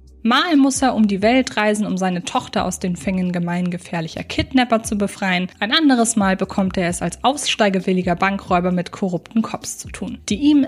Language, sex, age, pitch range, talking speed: German, female, 20-39, 190-245 Hz, 185 wpm